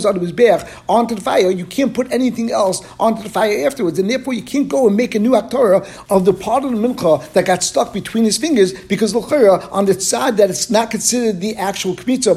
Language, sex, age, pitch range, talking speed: English, male, 50-69, 185-225 Hz, 235 wpm